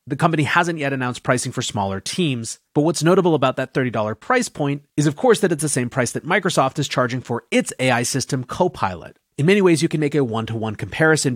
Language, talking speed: English, 225 wpm